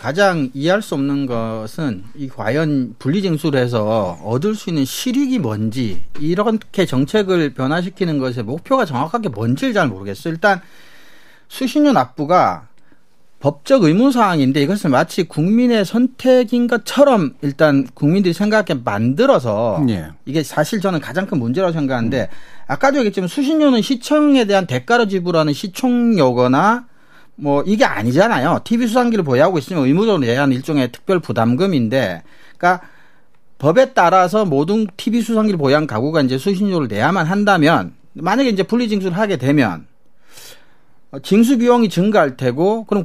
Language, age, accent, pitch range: Korean, 40-59, native, 140-220 Hz